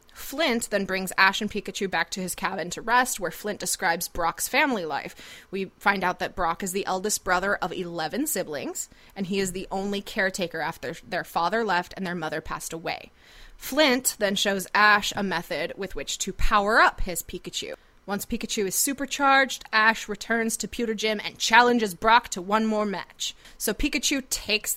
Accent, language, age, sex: American, English, 20-39, female